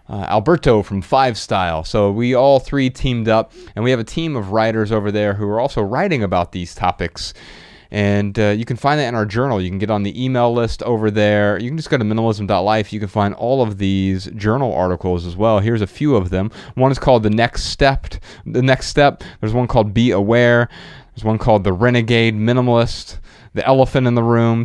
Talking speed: 220 wpm